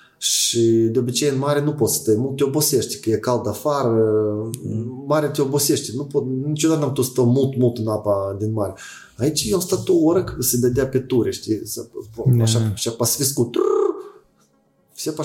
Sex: male